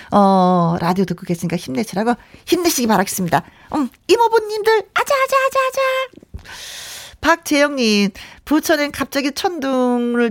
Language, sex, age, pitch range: Korean, female, 40-59, 175-275 Hz